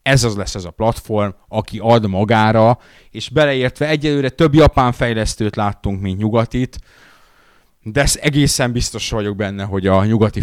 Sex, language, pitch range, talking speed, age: male, Hungarian, 100-125 Hz, 155 wpm, 30-49